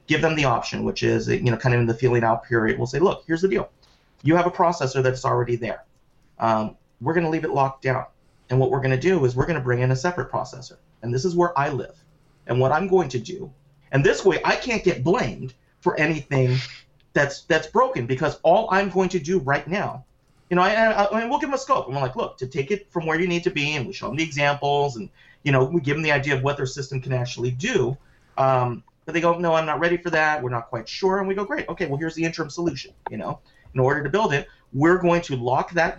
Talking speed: 275 wpm